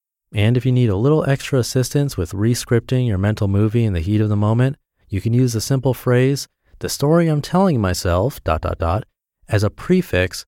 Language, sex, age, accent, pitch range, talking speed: English, male, 30-49, American, 95-130 Hz, 205 wpm